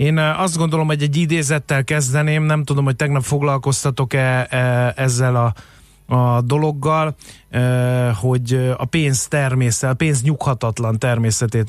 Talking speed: 125 wpm